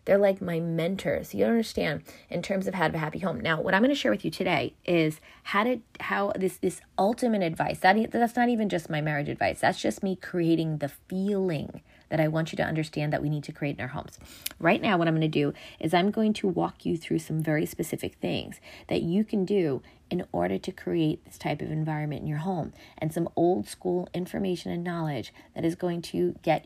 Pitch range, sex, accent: 155-200 Hz, female, American